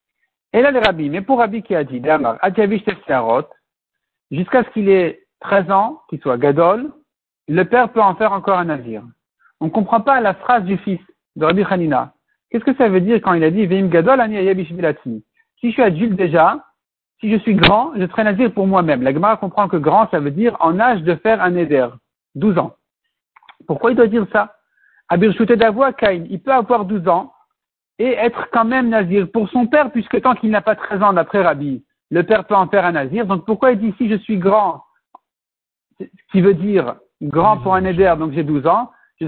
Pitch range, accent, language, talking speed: 170-225 Hz, French, French, 215 wpm